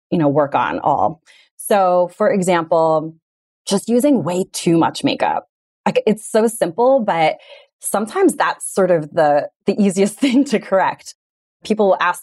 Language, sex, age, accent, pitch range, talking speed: English, female, 20-39, American, 165-230 Hz, 155 wpm